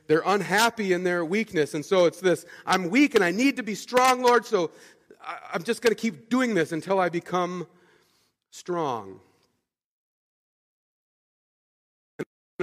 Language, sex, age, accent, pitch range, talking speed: English, male, 40-59, American, 135-185 Hz, 145 wpm